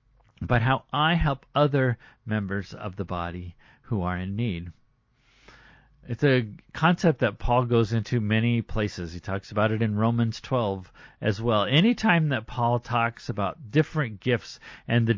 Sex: male